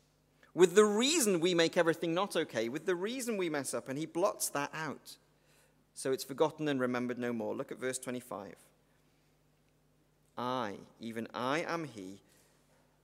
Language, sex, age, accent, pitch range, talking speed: English, male, 40-59, British, 135-215 Hz, 160 wpm